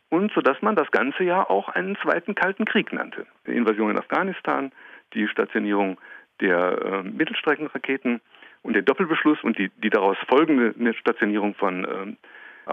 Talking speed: 150 wpm